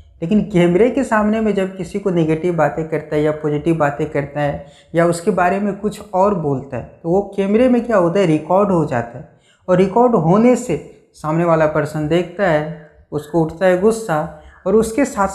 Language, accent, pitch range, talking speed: Hindi, native, 155-205 Hz, 205 wpm